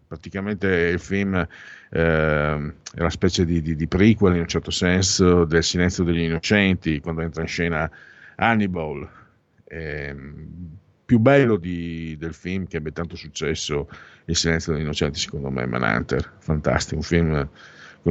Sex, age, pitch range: male, 50-69, 85-115 Hz